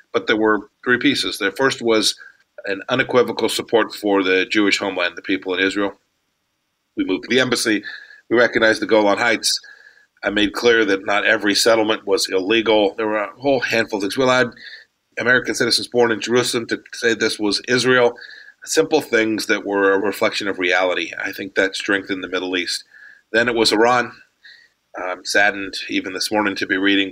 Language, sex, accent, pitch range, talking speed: English, male, American, 95-130 Hz, 185 wpm